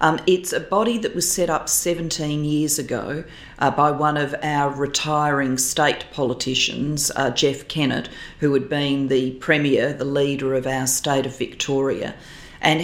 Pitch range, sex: 135-150 Hz, female